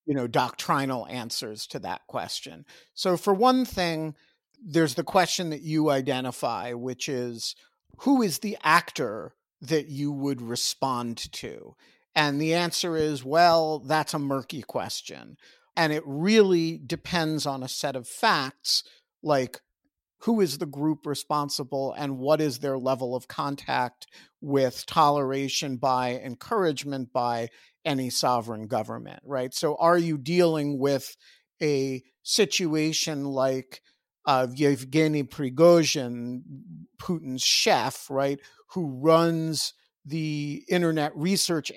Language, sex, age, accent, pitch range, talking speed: English, male, 50-69, American, 135-165 Hz, 125 wpm